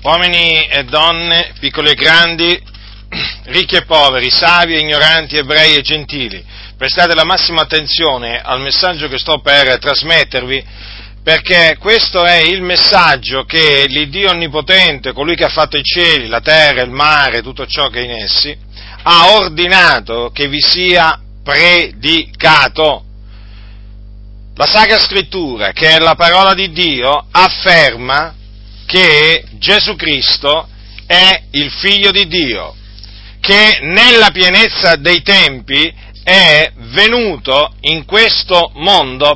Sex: male